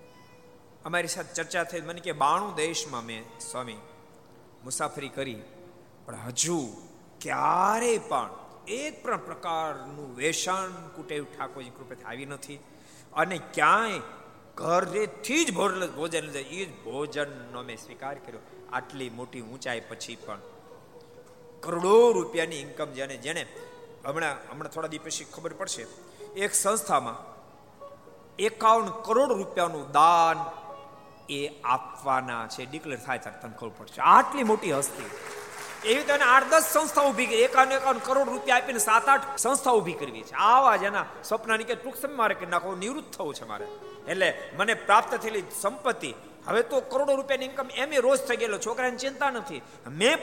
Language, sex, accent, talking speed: Gujarati, male, native, 35 wpm